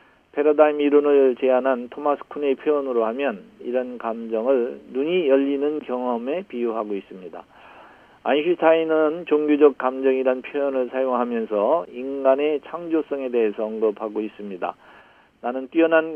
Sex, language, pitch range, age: male, Korean, 125-150 Hz, 40-59